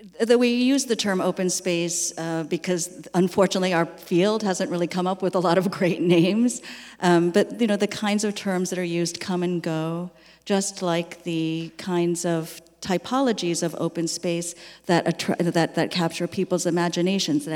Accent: American